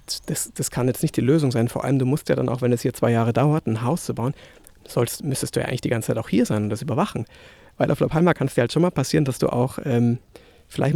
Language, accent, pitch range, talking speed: German, German, 120-160 Hz, 295 wpm